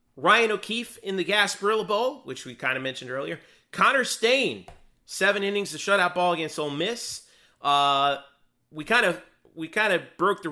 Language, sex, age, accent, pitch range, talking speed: English, male, 40-59, American, 135-175 Hz, 175 wpm